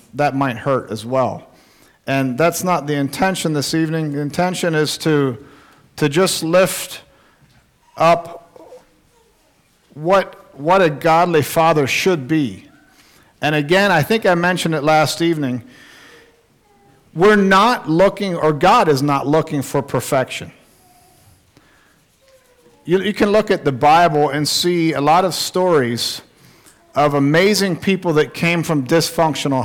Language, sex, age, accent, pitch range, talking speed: English, male, 50-69, American, 145-185 Hz, 135 wpm